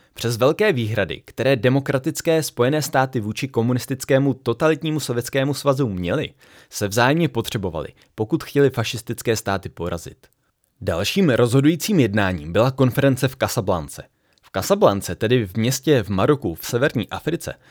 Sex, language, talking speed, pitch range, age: male, Czech, 130 wpm, 110-145 Hz, 20-39